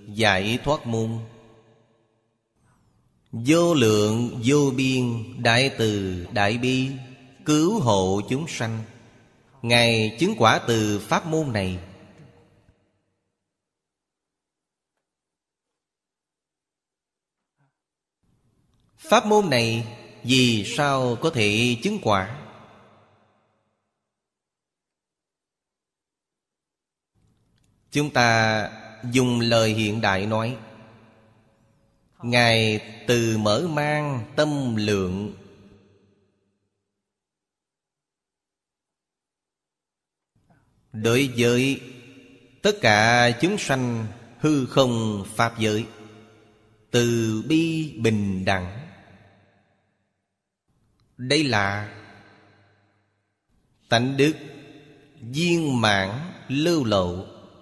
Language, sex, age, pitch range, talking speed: Vietnamese, male, 20-39, 105-130 Hz, 70 wpm